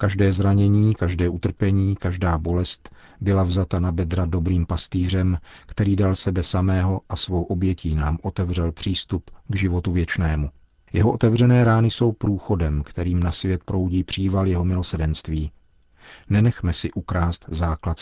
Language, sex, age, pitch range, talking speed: Czech, male, 50-69, 85-105 Hz, 135 wpm